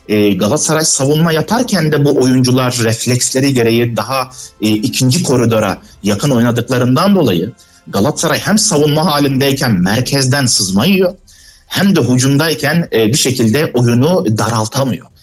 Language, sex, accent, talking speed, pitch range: Turkish, male, native, 105 wpm, 110-160 Hz